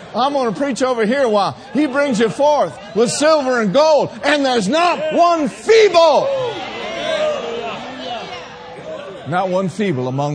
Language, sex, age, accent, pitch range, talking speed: English, male, 50-69, American, 160-255 Hz, 140 wpm